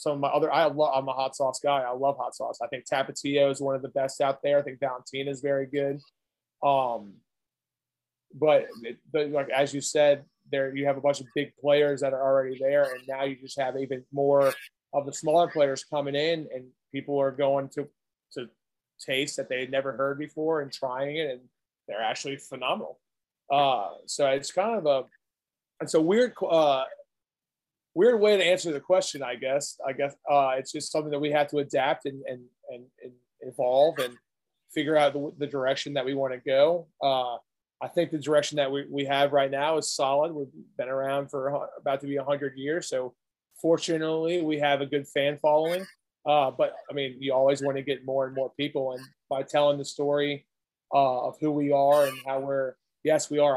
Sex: male